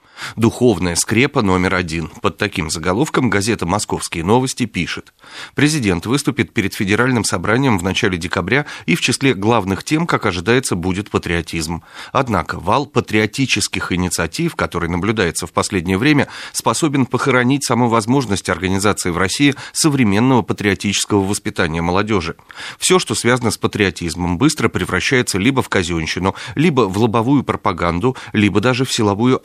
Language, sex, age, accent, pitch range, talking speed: Russian, male, 30-49, native, 95-120 Hz, 135 wpm